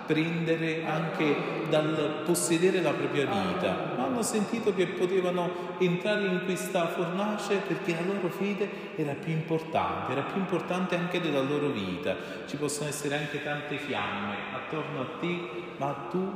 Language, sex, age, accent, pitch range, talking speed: Italian, male, 40-59, native, 120-170 Hz, 150 wpm